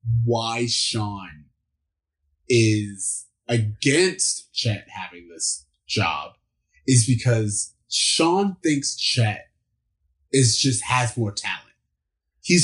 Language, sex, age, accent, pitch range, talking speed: English, male, 20-39, American, 105-130 Hz, 90 wpm